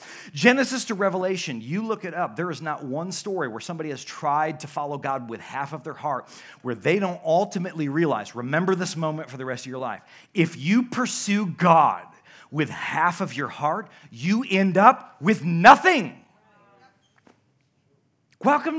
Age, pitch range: 40-59, 145-200 Hz